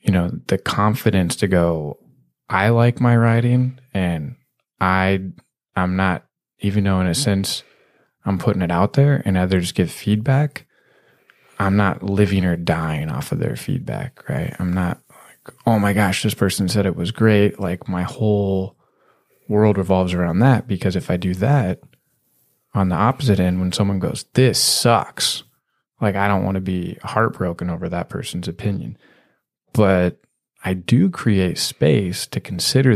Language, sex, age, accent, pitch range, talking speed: English, male, 20-39, American, 90-120 Hz, 160 wpm